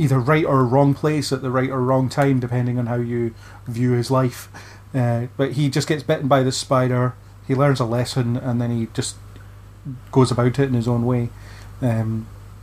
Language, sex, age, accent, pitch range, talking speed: English, male, 30-49, British, 105-140 Hz, 205 wpm